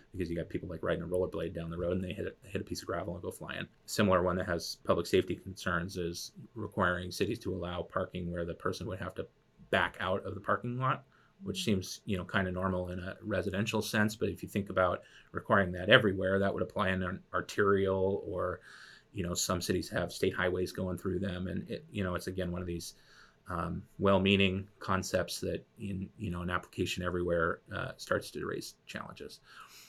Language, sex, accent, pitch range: English, male, American, 90-100 Hz